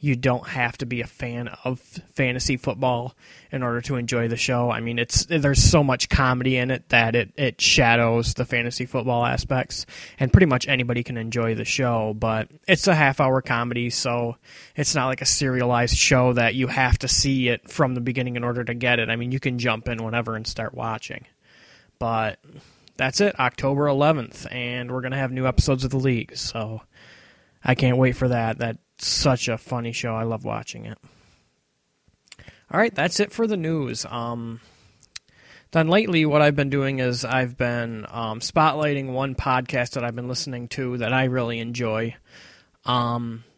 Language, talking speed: English, 190 wpm